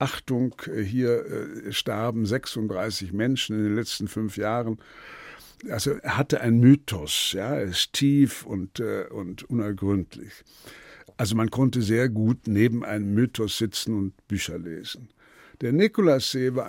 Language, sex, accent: German, male, German